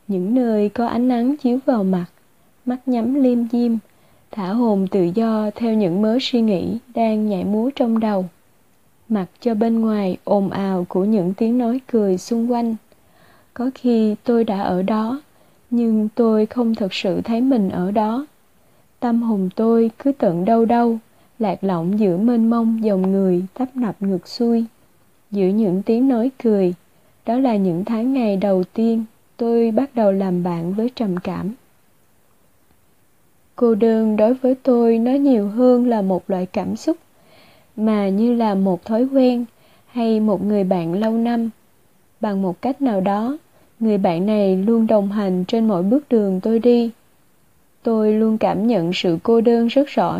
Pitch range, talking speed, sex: 195-235 Hz, 170 wpm, female